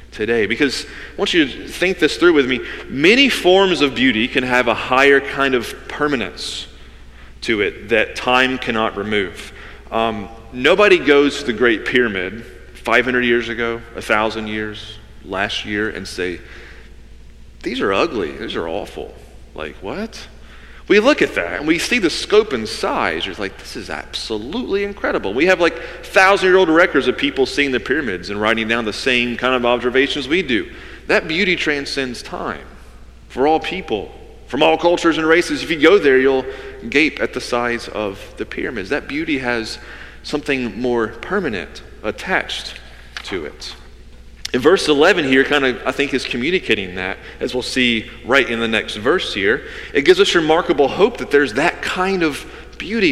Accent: American